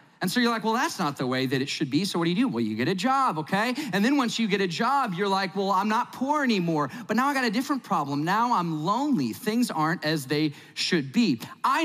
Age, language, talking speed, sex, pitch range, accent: 30-49, English, 280 wpm, male, 185-250 Hz, American